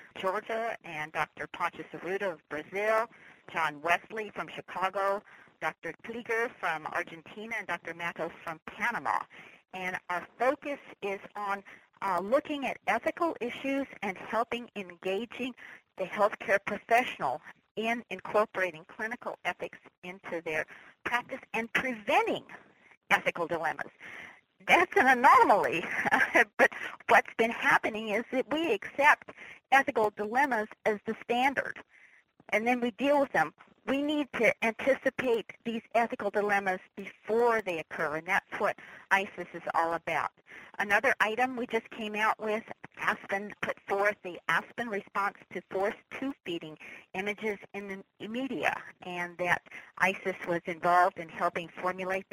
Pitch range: 175-230 Hz